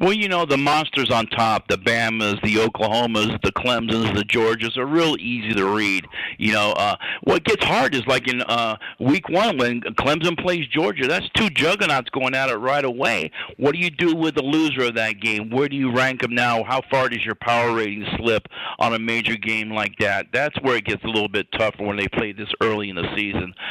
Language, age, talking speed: English, 50-69, 225 wpm